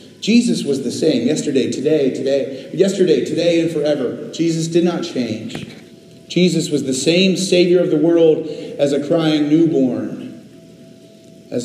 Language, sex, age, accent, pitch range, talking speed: English, male, 40-59, American, 125-200 Hz, 145 wpm